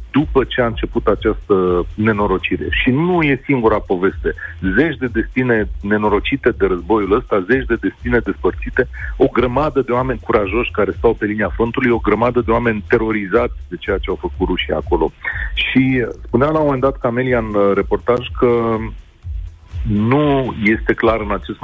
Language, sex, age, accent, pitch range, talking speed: Romanian, male, 40-59, native, 95-120 Hz, 160 wpm